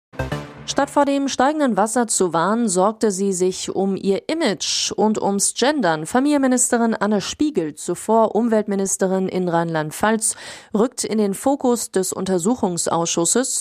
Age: 30-49